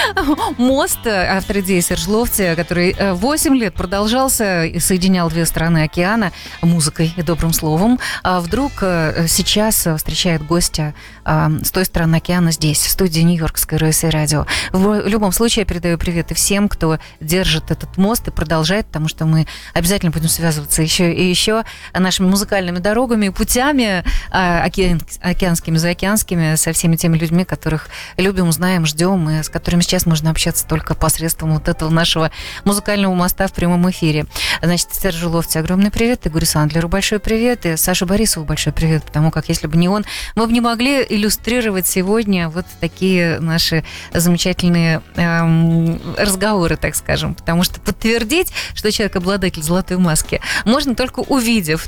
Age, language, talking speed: 20-39, Russian, 150 wpm